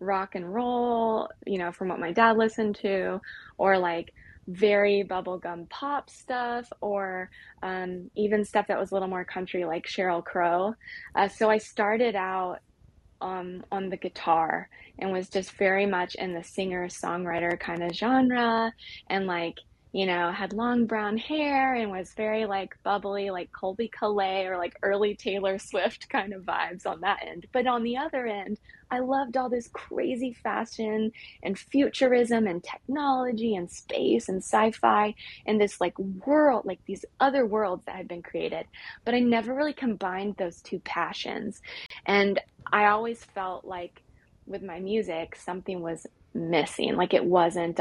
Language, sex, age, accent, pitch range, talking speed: English, female, 20-39, American, 180-225 Hz, 165 wpm